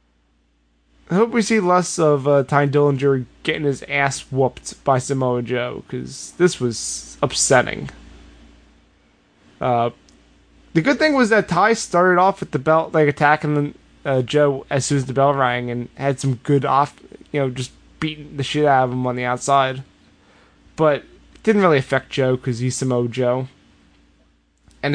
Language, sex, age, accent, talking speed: English, male, 20-39, American, 170 wpm